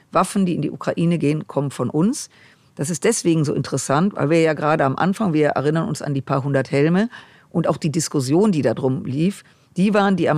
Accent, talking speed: German, 230 wpm